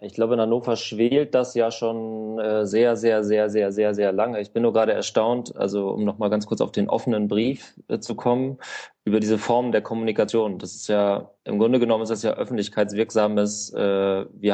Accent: German